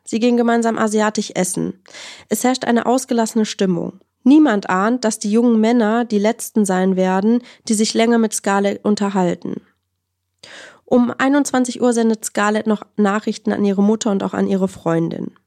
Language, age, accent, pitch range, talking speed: English, 20-39, German, 200-230 Hz, 160 wpm